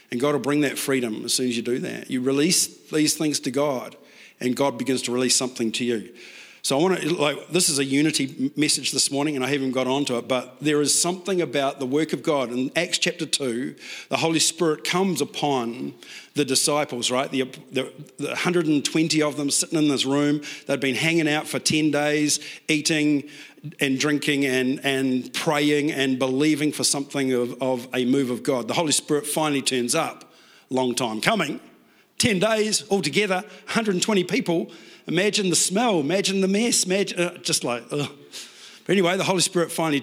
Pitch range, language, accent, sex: 125-155 Hz, English, Australian, male